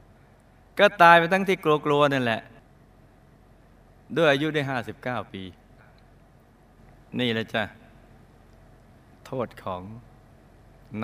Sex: male